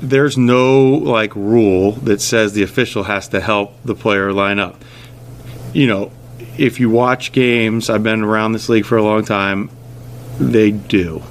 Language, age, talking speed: English, 40-59, 170 wpm